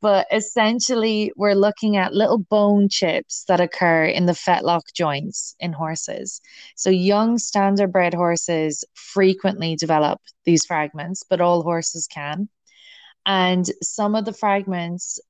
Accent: Irish